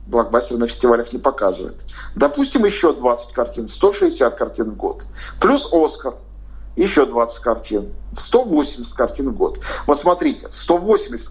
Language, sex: Russian, male